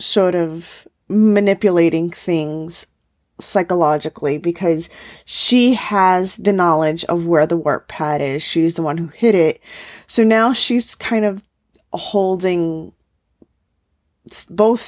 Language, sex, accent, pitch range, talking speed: English, female, American, 165-210 Hz, 115 wpm